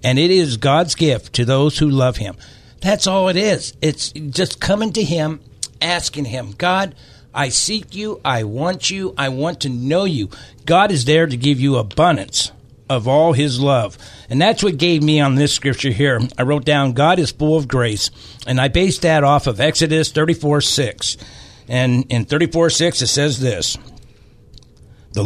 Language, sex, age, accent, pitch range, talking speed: English, male, 60-79, American, 120-160 Hz, 185 wpm